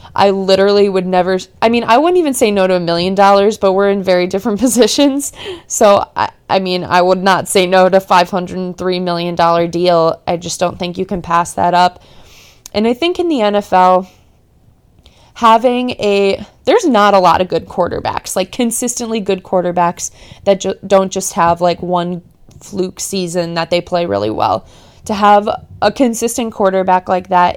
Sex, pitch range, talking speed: female, 180-210 Hz, 180 wpm